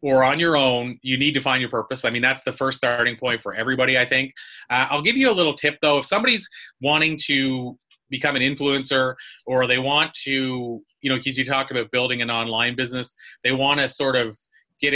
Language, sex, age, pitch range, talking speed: English, male, 30-49, 120-140 Hz, 225 wpm